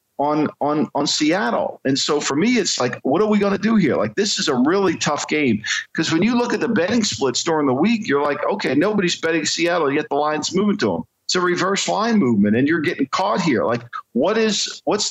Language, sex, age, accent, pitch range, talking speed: English, male, 50-69, American, 120-180 Hz, 240 wpm